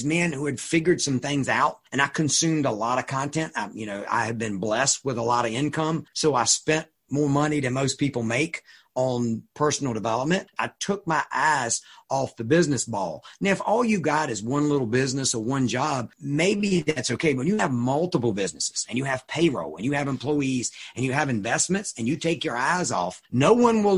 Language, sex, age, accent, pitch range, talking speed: English, male, 40-59, American, 125-165 Hz, 220 wpm